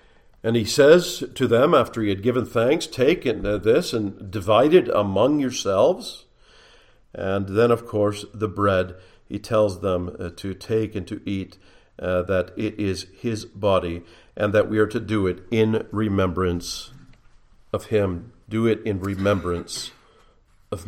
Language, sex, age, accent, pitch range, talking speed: English, male, 50-69, American, 95-125 Hz, 155 wpm